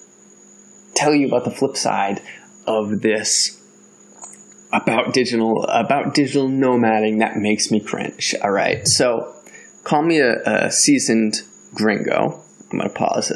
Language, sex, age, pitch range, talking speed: English, male, 20-39, 110-135 Hz, 130 wpm